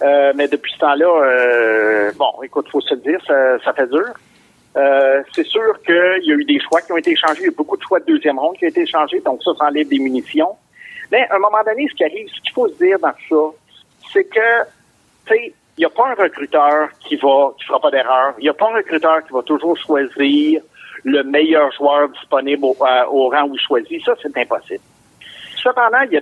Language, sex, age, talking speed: French, male, 50-69, 240 wpm